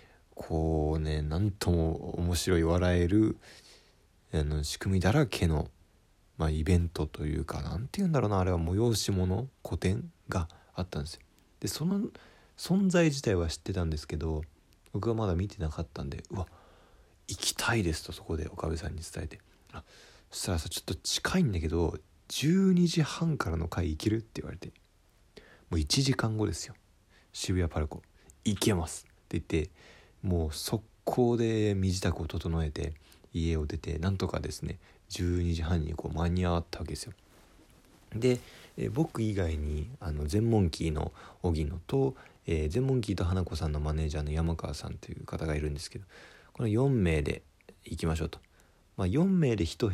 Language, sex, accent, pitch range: Japanese, male, native, 80-105 Hz